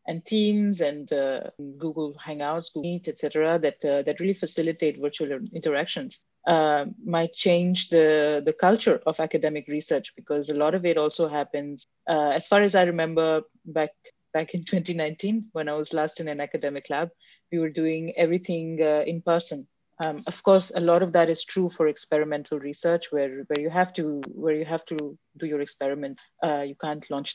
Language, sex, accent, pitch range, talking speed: English, female, Indian, 150-180 Hz, 190 wpm